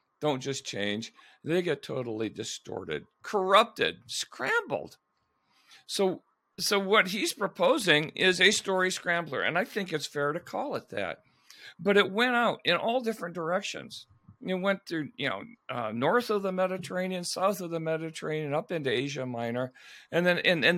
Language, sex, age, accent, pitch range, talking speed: English, male, 50-69, American, 130-185 Hz, 165 wpm